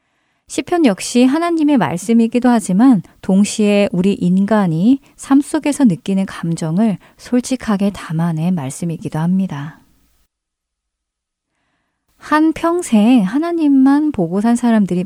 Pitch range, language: 170-245 Hz, Korean